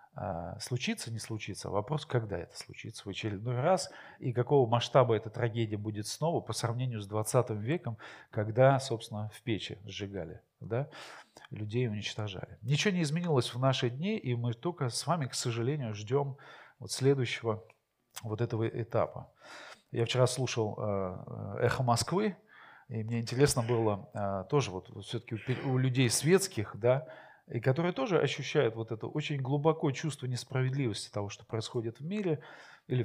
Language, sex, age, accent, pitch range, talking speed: Russian, male, 40-59, native, 110-135 Hz, 150 wpm